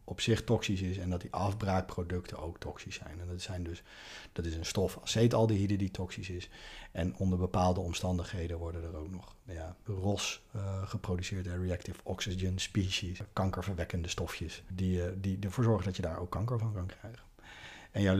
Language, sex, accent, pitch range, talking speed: Dutch, male, Dutch, 95-110 Hz, 175 wpm